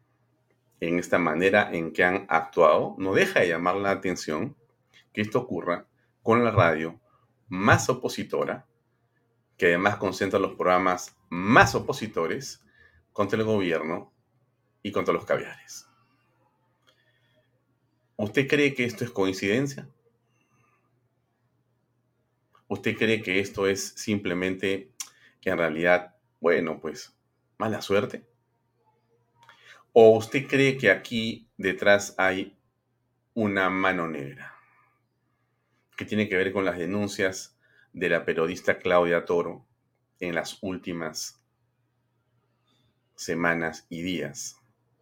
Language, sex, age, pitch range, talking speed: Spanish, male, 40-59, 90-125 Hz, 110 wpm